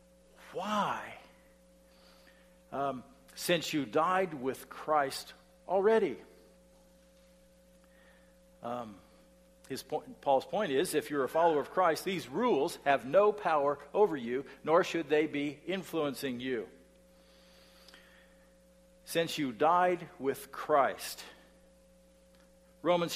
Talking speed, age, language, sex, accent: 95 wpm, 50-69, English, male, American